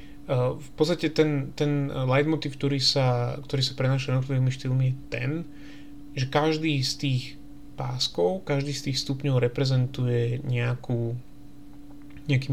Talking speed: 120 wpm